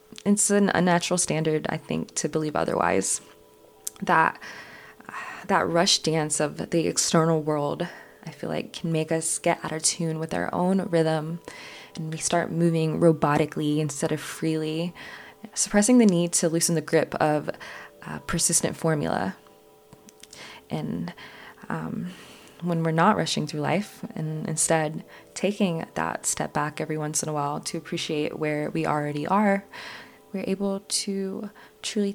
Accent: American